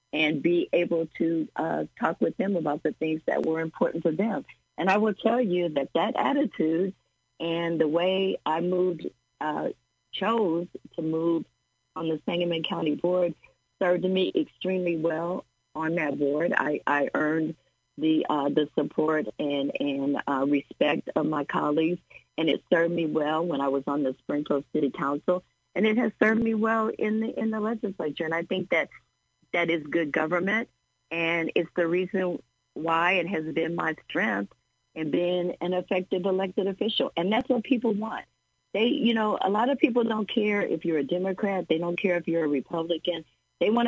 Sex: female